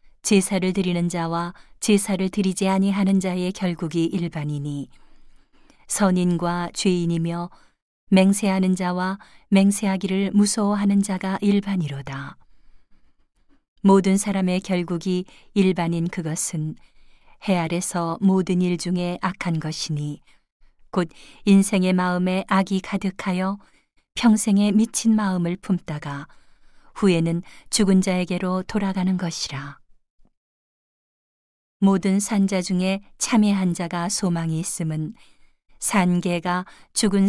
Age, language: 40-59, Korean